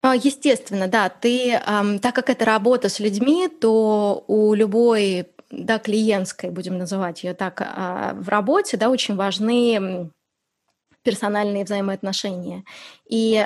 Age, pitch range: 20-39, 190-225 Hz